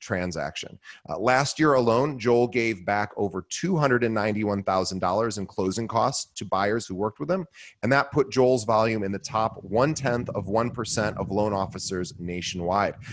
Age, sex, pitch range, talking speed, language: 30-49, male, 105-135 Hz, 160 wpm, English